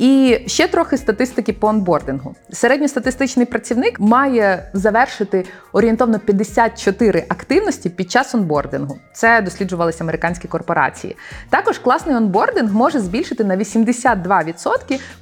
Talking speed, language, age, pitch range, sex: 105 wpm, Ukrainian, 20-39, 180-245 Hz, female